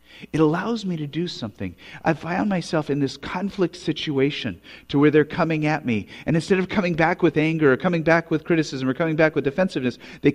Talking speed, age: 215 wpm, 50-69